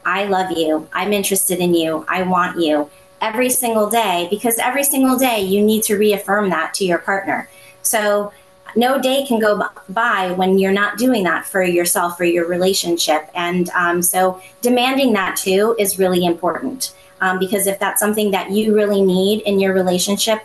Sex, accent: female, American